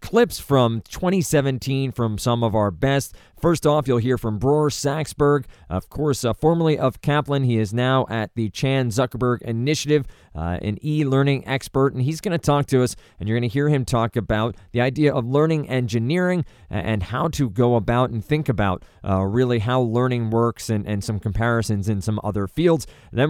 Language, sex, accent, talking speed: English, male, American, 195 wpm